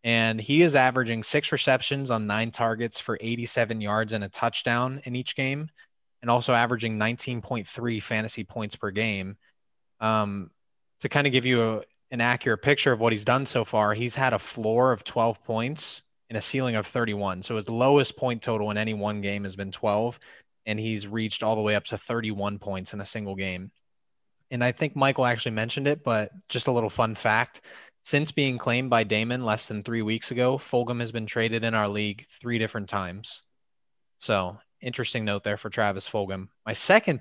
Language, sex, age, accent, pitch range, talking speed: English, male, 20-39, American, 110-130 Hz, 195 wpm